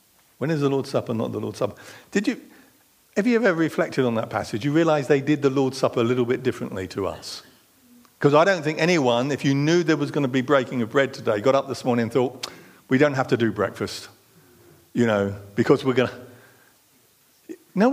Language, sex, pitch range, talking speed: English, male, 120-155 Hz, 225 wpm